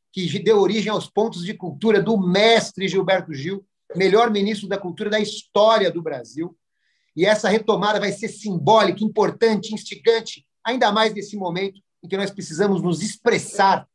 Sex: male